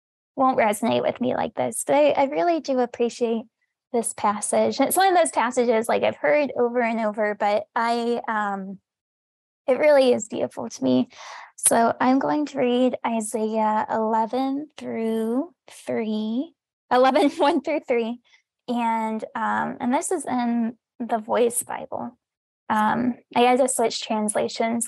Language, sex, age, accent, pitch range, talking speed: English, female, 10-29, American, 225-265 Hz, 150 wpm